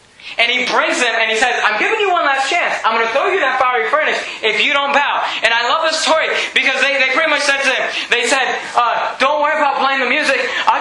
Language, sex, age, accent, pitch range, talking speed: English, male, 20-39, American, 210-280 Hz, 265 wpm